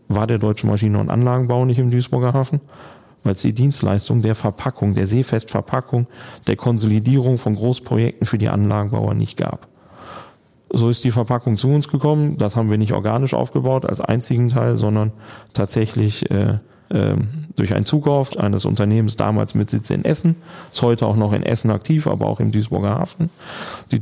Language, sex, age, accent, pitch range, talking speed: German, male, 30-49, German, 105-125 Hz, 175 wpm